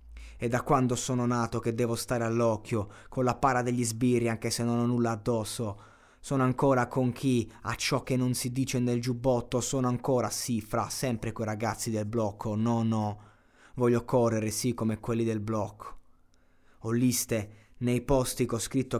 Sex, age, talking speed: male, 20-39, 180 wpm